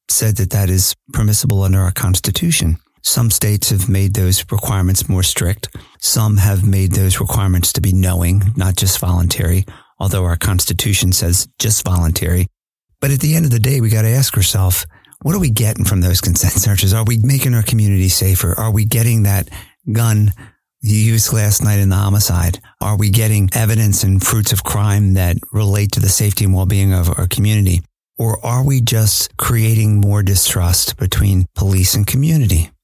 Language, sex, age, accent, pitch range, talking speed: English, male, 50-69, American, 95-115 Hz, 185 wpm